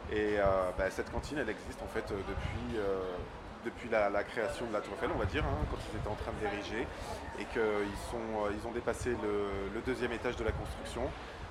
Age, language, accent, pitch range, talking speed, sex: 20-39, French, French, 100-125 Hz, 175 wpm, male